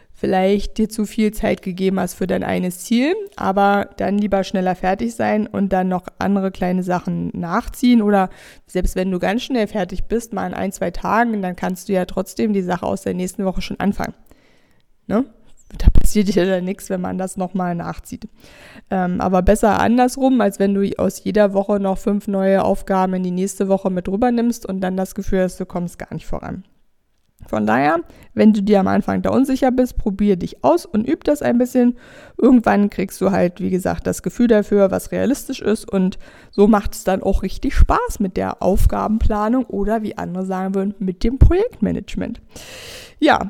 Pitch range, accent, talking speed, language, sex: 185-230 Hz, German, 195 wpm, German, female